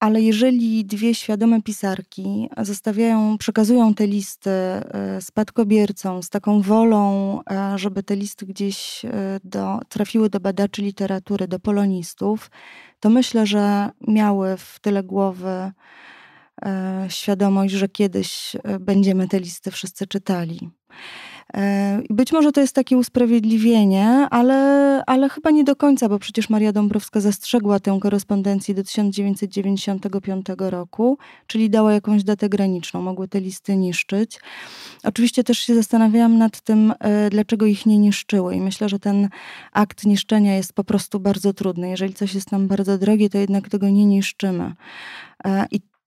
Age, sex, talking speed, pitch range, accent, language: 20-39, female, 135 wpm, 195-220 Hz, native, Polish